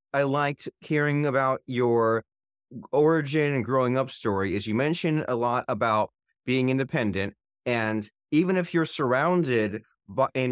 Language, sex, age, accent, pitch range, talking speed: English, male, 30-49, American, 115-150 Hz, 135 wpm